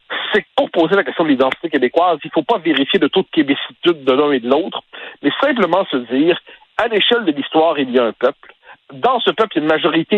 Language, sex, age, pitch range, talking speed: French, male, 60-79, 150-225 Hz, 260 wpm